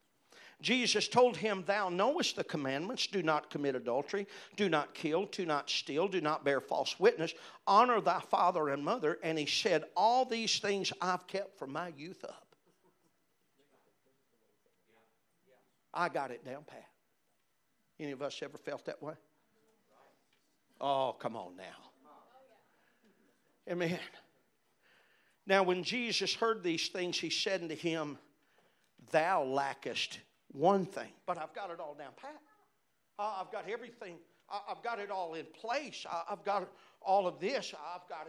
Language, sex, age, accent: English, male, 50-69, American